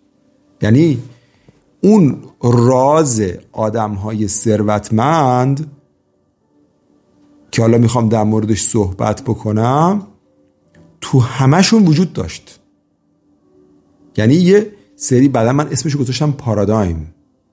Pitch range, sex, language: 105-135 Hz, male, Persian